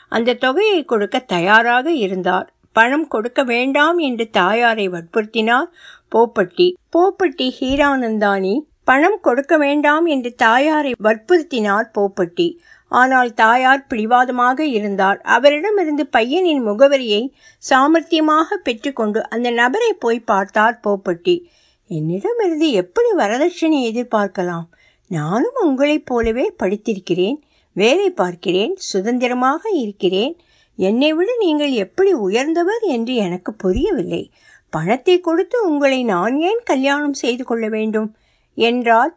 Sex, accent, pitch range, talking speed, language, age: female, native, 205-315 Hz, 100 wpm, Tamil, 60-79